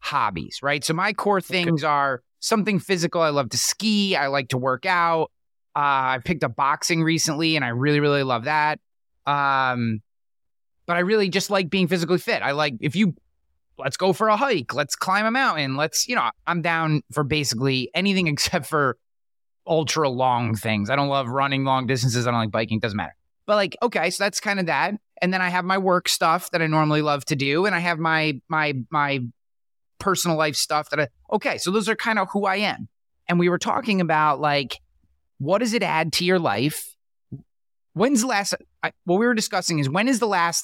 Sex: male